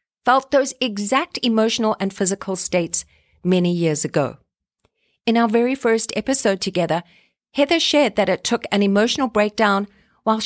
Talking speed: 145 wpm